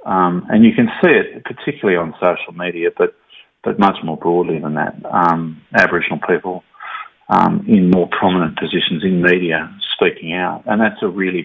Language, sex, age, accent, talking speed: English, male, 40-59, Australian, 175 wpm